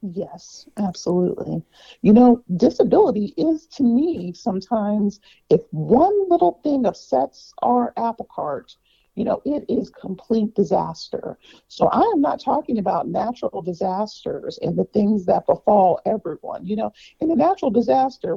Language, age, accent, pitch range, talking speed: English, 50-69, American, 220-270 Hz, 140 wpm